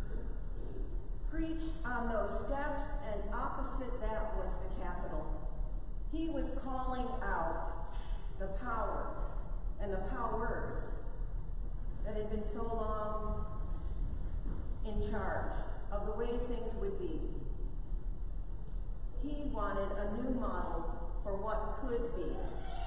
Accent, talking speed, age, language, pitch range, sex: American, 110 wpm, 40-59, English, 205-255 Hz, female